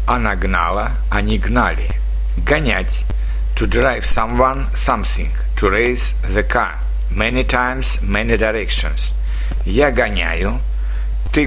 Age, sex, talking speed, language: 60-79, male, 100 wpm, Russian